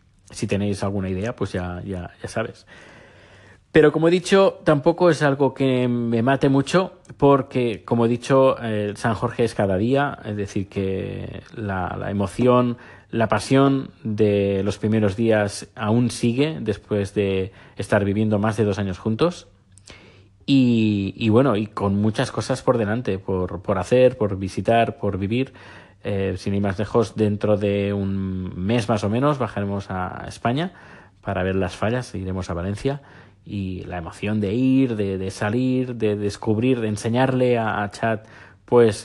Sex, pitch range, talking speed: male, 100-125 Hz, 165 wpm